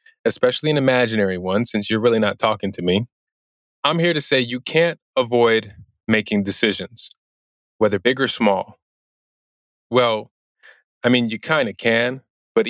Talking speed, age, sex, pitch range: 150 wpm, 20-39, male, 100-130 Hz